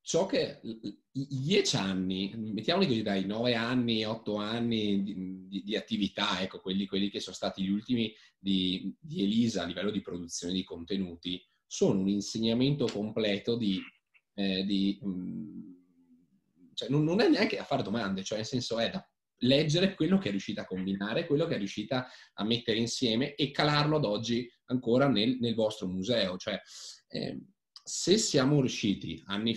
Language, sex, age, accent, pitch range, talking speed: Italian, male, 20-39, native, 100-120 Hz, 170 wpm